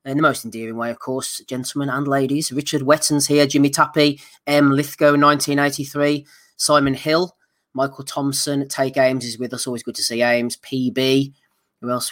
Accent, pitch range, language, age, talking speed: British, 120-140 Hz, English, 20-39, 175 wpm